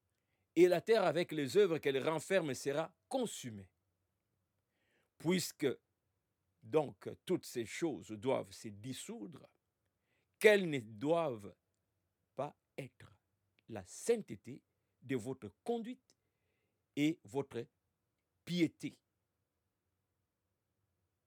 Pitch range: 100-155 Hz